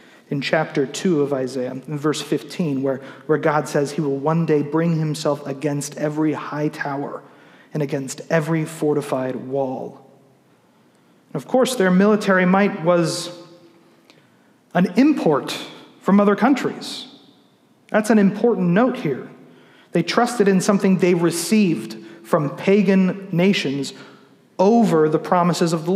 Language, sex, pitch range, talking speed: English, male, 150-185 Hz, 130 wpm